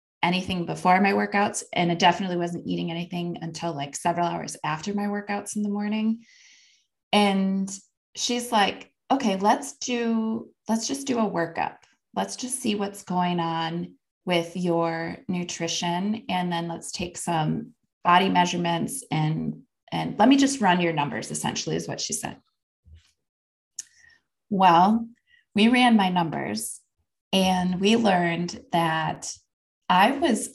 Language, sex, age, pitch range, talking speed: English, female, 20-39, 170-215 Hz, 140 wpm